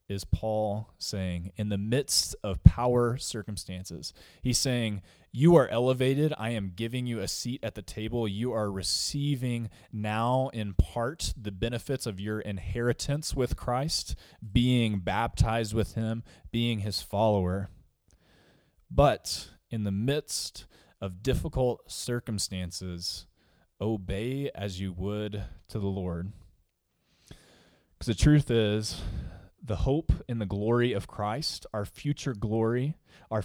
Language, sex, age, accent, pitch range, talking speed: English, male, 20-39, American, 95-120 Hz, 130 wpm